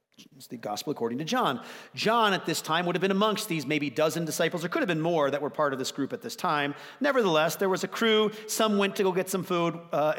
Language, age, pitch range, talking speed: English, 40-59, 145-210 Hz, 265 wpm